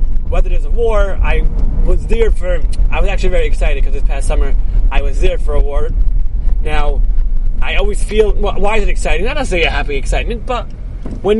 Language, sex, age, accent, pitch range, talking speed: English, male, 30-49, American, 135-225 Hz, 205 wpm